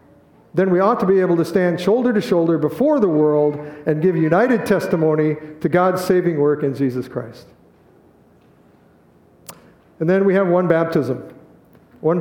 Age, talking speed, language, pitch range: 50-69, 155 wpm, English, 150-190 Hz